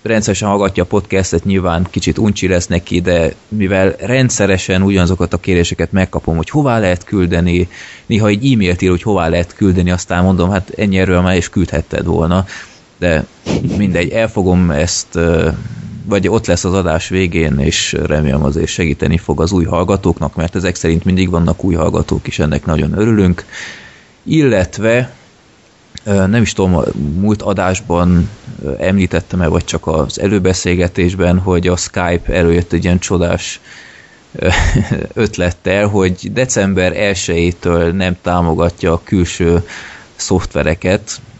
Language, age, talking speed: Hungarian, 20-39, 135 wpm